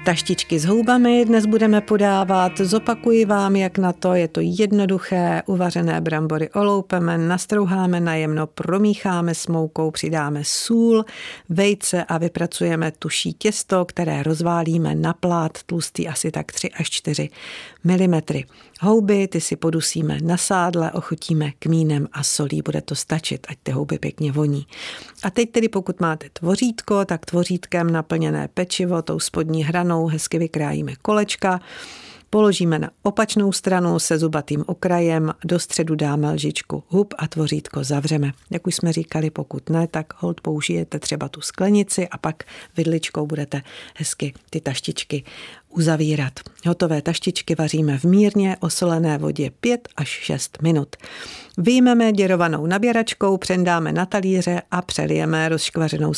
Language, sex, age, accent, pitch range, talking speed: Czech, female, 50-69, native, 155-190 Hz, 140 wpm